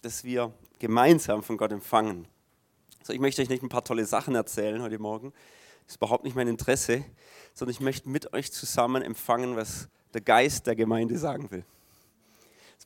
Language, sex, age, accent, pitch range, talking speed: German, male, 30-49, German, 115-140 Hz, 180 wpm